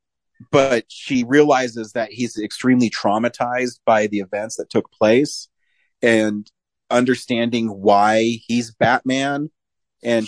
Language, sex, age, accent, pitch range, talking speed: English, male, 30-49, American, 100-120 Hz, 110 wpm